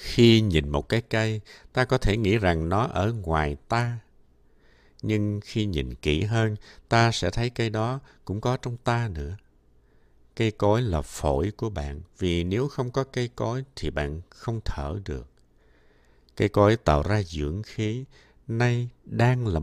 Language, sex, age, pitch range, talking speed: Vietnamese, male, 60-79, 75-115 Hz, 170 wpm